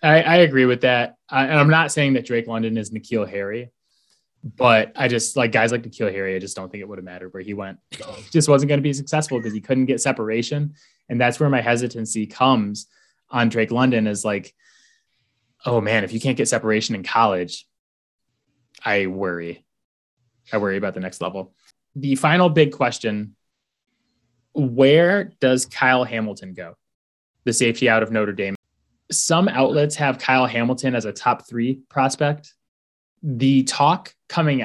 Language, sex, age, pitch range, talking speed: English, male, 20-39, 110-140 Hz, 175 wpm